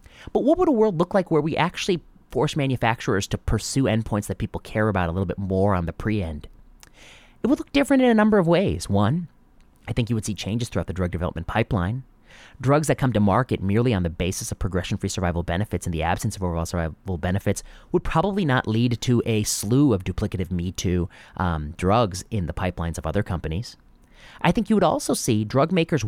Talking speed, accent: 210 wpm, American